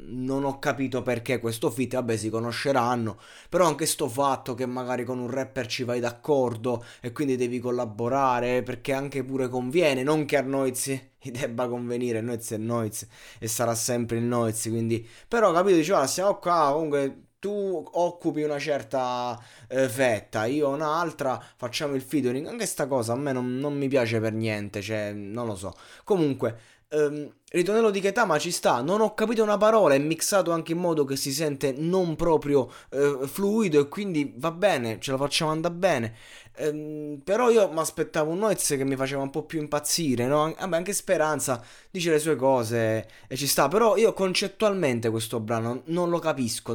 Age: 20-39